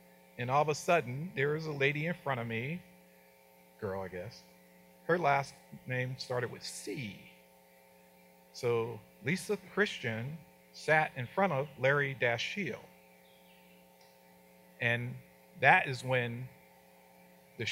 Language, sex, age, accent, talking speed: English, male, 50-69, American, 120 wpm